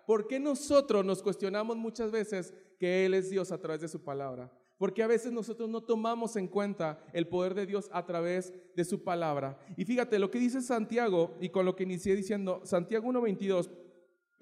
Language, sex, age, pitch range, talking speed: Spanish, male, 40-59, 180-225 Hz, 200 wpm